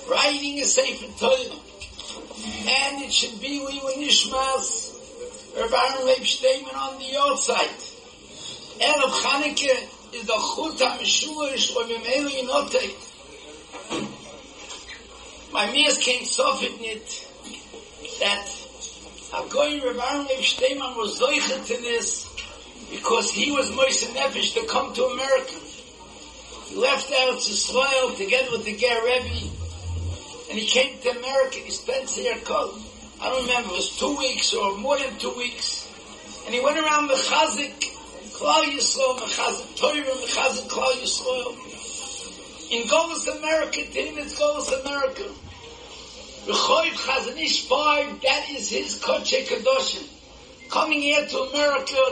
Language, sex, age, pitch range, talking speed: English, male, 60-79, 250-305 Hz, 130 wpm